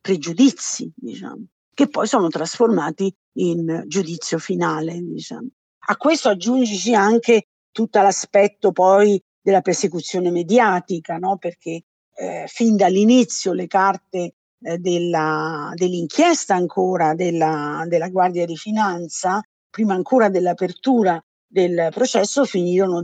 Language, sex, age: Italian, female, 50-69